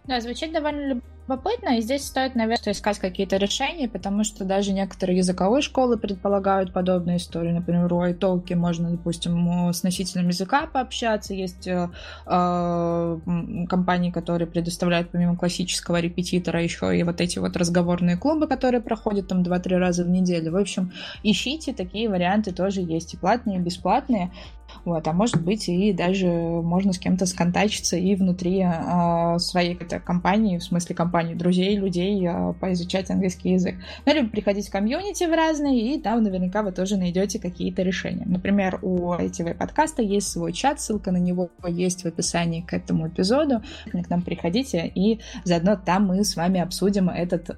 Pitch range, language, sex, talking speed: 175-205 Hz, Russian, female, 160 wpm